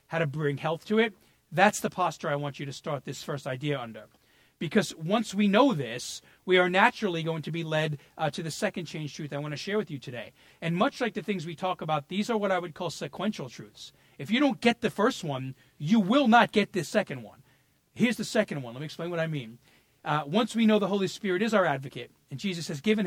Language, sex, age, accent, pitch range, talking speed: English, male, 40-59, American, 150-210 Hz, 250 wpm